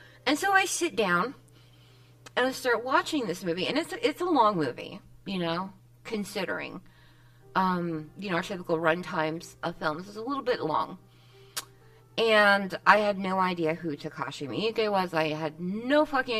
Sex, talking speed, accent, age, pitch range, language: female, 170 wpm, American, 30-49, 155-220 Hz, English